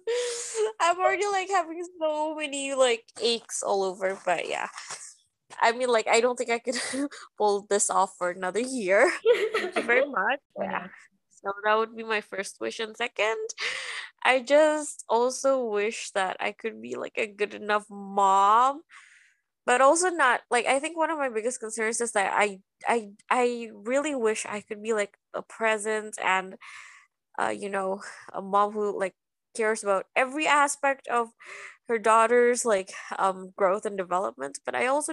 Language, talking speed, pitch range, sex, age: English, 170 wpm, 205-265 Hz, female, 20-39